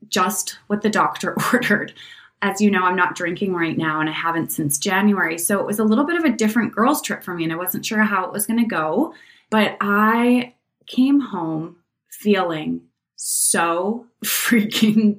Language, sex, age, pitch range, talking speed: English, female, 20-39, 185-235 Hz, 190 wpm